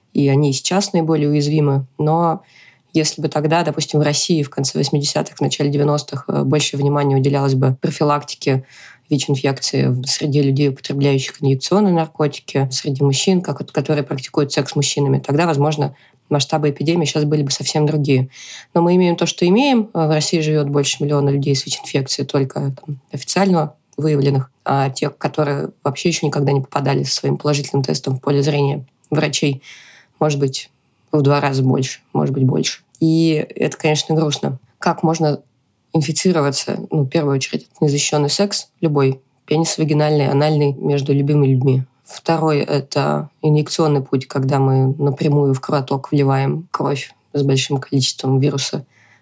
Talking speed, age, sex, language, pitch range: 150 wpm, 20-39, female, Russian, 135-155 Hz